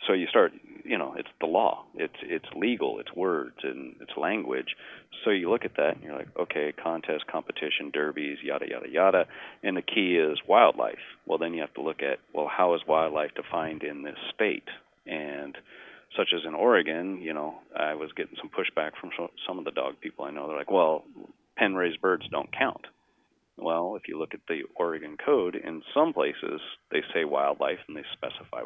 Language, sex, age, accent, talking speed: English, male, 40-59, American, 200 wpm